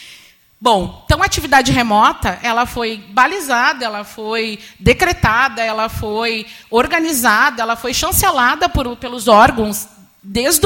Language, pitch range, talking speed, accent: Portuguese, 210-275 Hz, 115 wpm, Brazilian